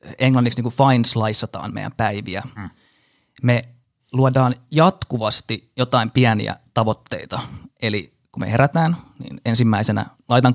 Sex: male